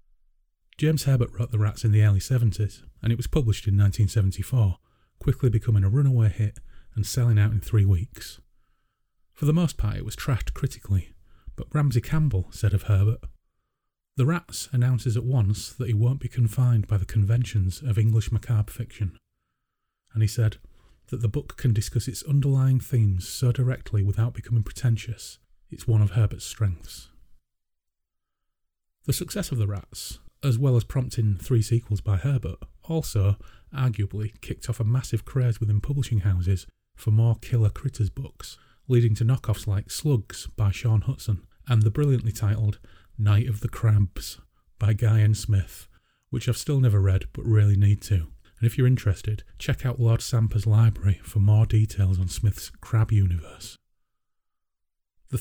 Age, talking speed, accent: 30-49, 165 wpm, British